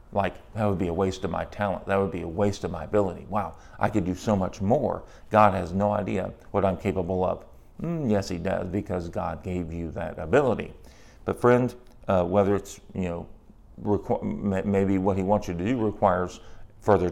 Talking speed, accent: 205 wpm, American